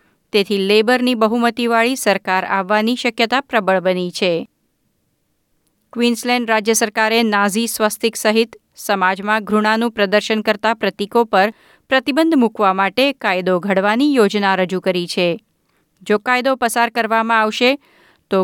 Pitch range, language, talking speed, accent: 200-245 Hz, Gujarati, 115 wpm, native